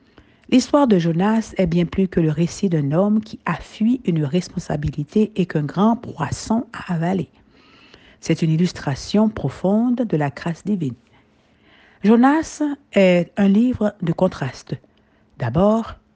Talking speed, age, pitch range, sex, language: 135 wpm, 60-79, 165-220 Hz, female, French